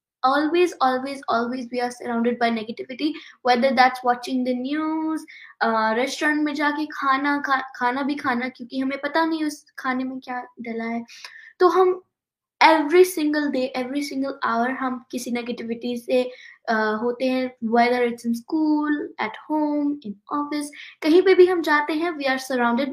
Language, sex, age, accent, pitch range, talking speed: Hindi, female, 20-39, native, 240-300 Hz, 125 wpm